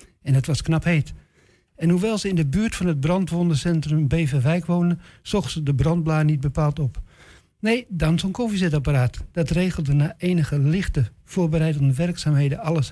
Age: 60-79